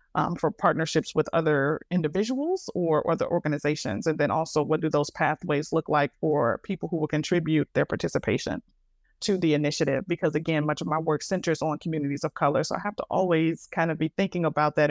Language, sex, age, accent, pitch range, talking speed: English, female, 30-49, American, 155-170 Hz, 205 wpm